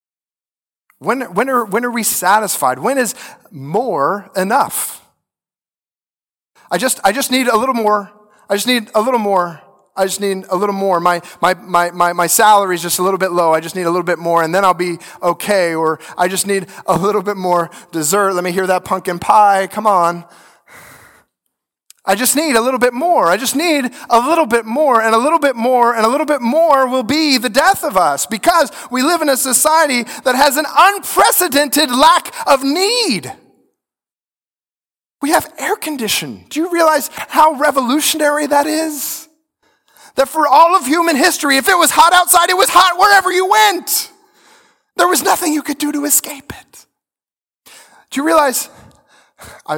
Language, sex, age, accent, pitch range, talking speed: English, male, 30-49, American, 195-310 Hz, 190 wpm